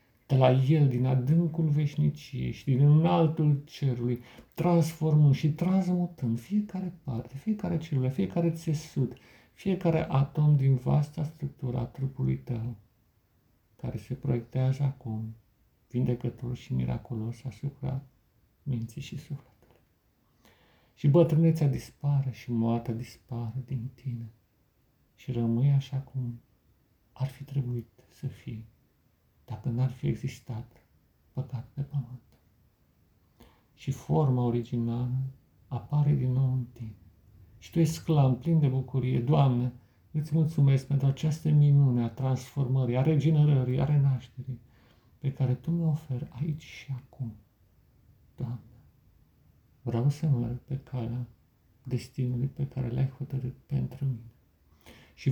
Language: Romanian